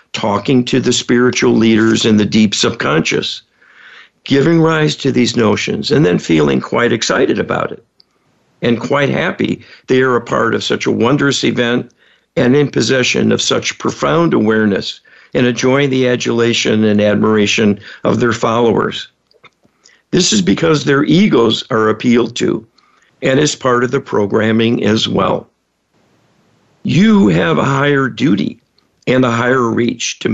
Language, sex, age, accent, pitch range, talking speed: English, male, 60-79, American, 115-140 Hz, 150 wpm